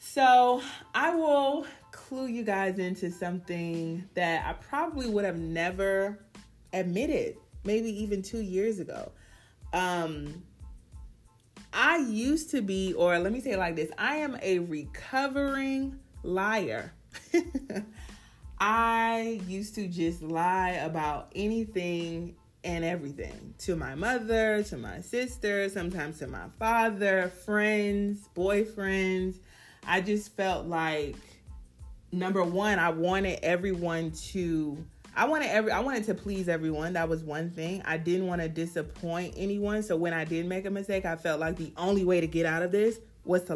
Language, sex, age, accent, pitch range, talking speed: English, female, 30-49, American, 170-210 Hz, 145 wpm